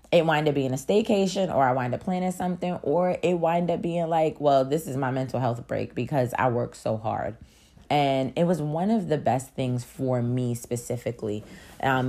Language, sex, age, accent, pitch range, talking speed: English, female, 20-39, American, 125-160 Hz, 210 wpm